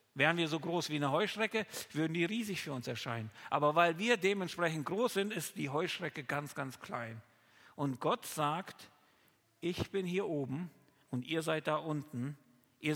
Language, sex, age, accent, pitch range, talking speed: German, male, 50-69, German, 140-180 Hz, 175 wpm